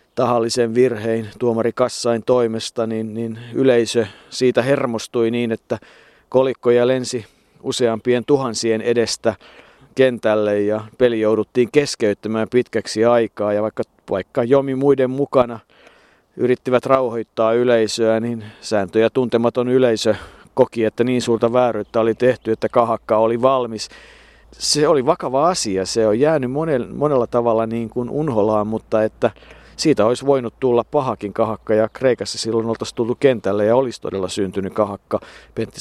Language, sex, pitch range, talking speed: Finnish, male, 105-125 Hz, 135 wpm